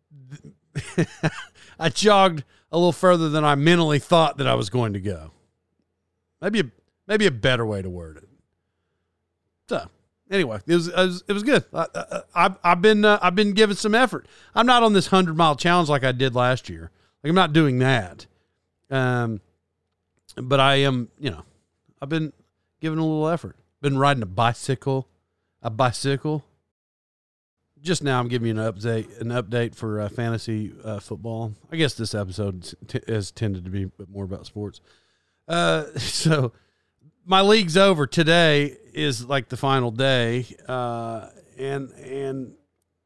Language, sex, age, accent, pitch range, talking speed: English, male, 40-59, American, 110-160 Hz, 160 wpm